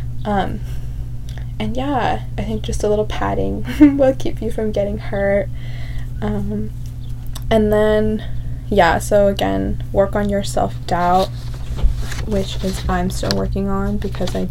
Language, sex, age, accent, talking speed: English, female, 20-39, American, 135 wpm